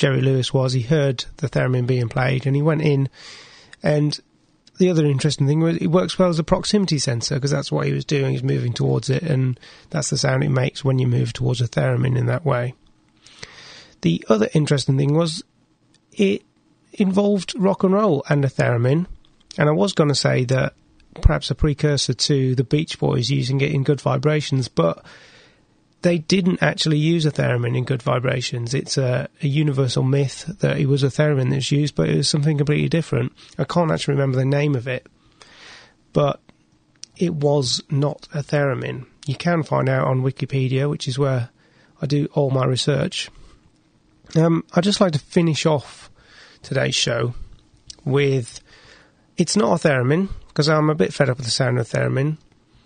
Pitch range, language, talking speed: 130-155 Hz, English, 185 wpm